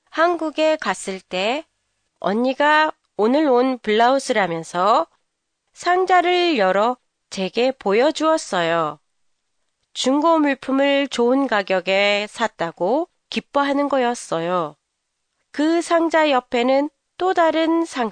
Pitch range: 205-310 Hz